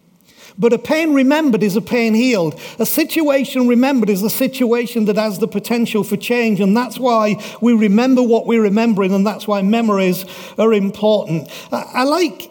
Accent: British